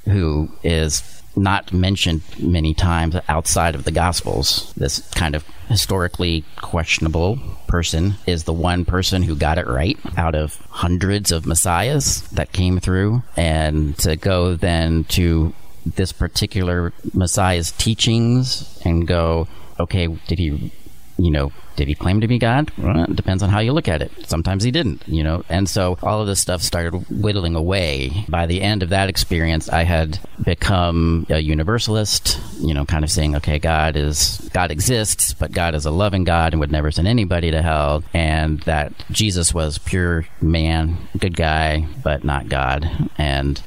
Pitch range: 80-95 Hz